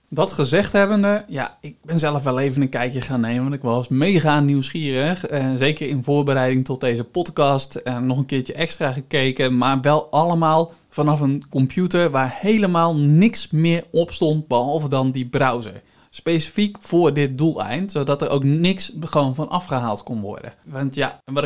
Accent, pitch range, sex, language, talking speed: Dutch, 130-170 Hz, male, Dutch, 175 wpm